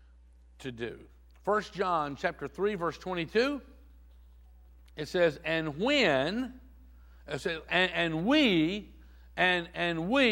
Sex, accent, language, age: male, American, English, 60-79